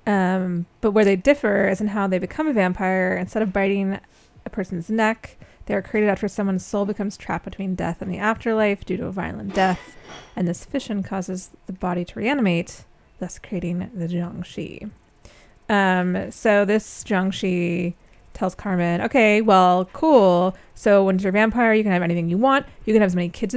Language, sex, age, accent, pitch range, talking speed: English, female, 20-39, American, 185-220 Hz, 190 wpm